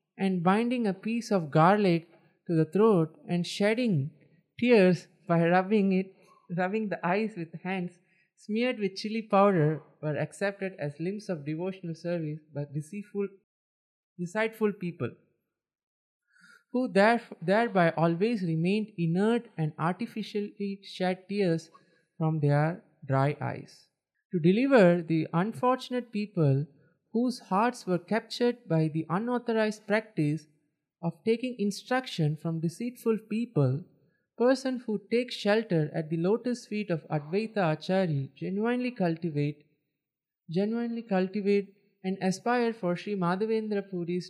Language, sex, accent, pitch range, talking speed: English, male, Indian, 165-215 Hz, 120 wpm